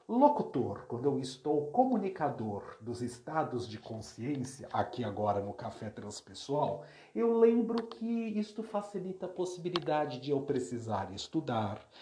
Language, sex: Portuguese, male